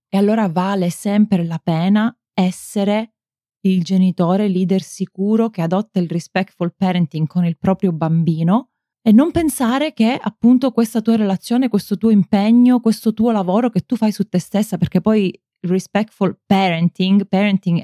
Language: Italian